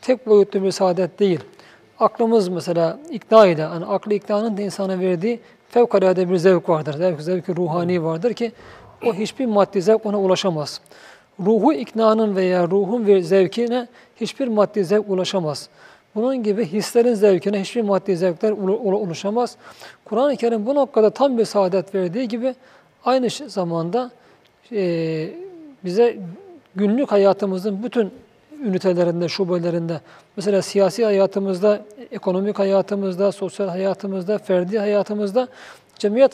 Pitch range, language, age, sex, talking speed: 185-225 Hz, Turkish, 40-59, male, 125 wpm